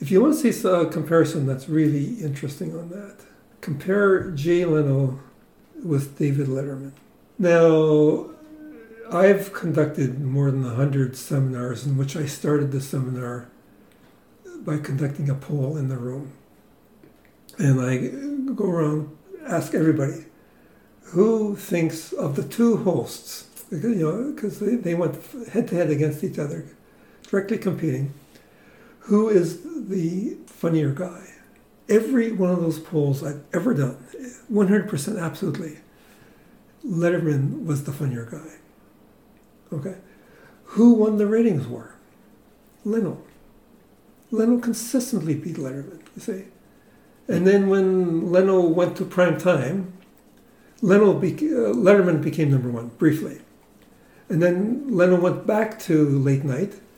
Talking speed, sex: 125 wpm, male